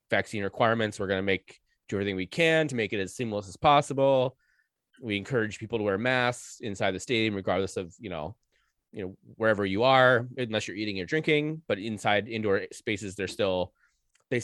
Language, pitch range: English, 100-135 Hz